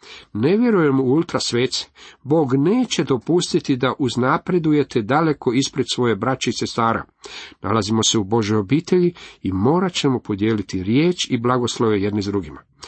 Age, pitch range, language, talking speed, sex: 50-69, 110-140 Hz, Croatian, 135 wpm, male